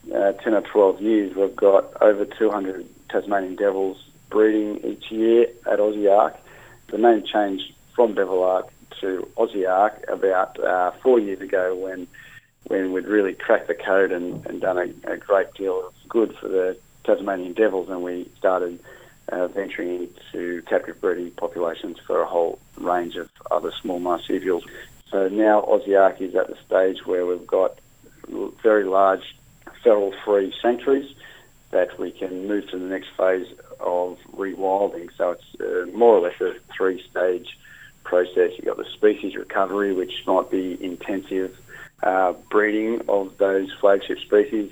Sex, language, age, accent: male, English, 40-59, Australian